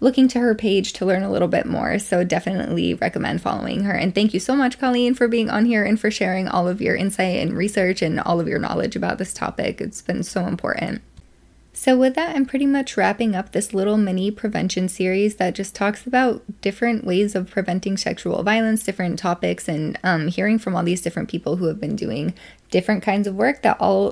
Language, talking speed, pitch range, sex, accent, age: English, 220 wpm, 180-215 Hz, female, American, 10-29